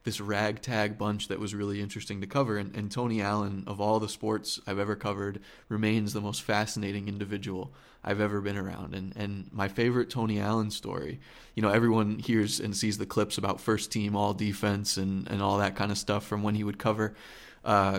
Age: 20-39